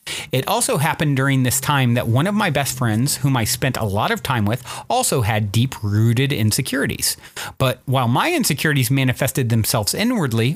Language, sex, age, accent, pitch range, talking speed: English, male, 30-49, American, 115-160 Hz, 175 wpm